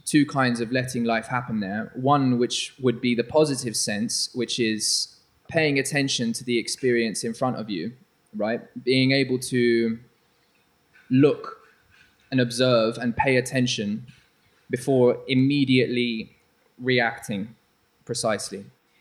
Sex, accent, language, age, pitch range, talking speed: male, British, English, 20-39, 120-135 Hz, 125 wpm